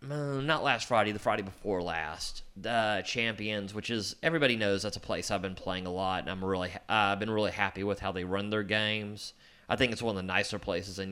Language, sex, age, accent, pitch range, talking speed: English, male, 30-49, American, 95-125 Hz, 235 wpm